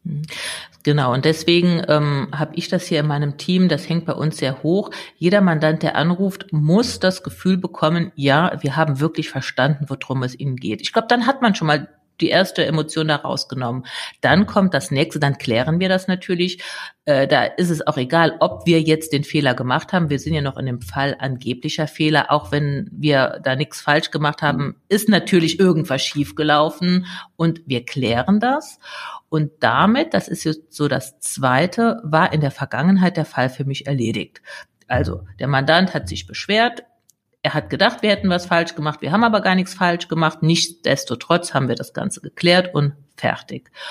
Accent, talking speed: German, 190 wpm